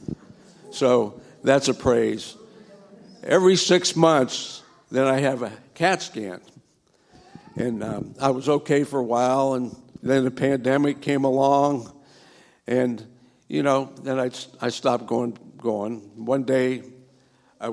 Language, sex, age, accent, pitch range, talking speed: English, male, 60-79, American, 120-140 Hz, 130 wpm